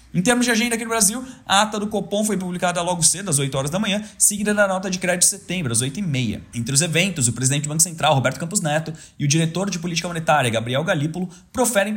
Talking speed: 255 wpm